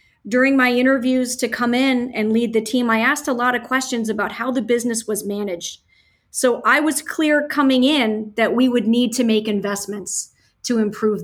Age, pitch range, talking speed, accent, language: 30-49, 210-250 Hz, 200 wpm, American, English